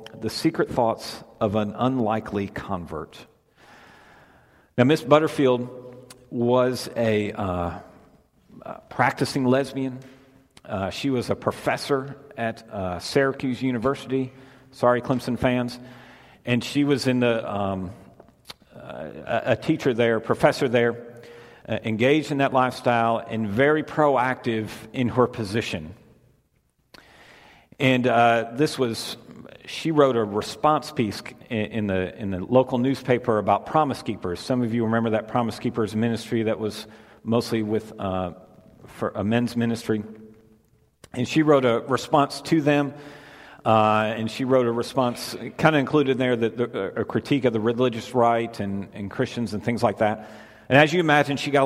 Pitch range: 110-135 Hz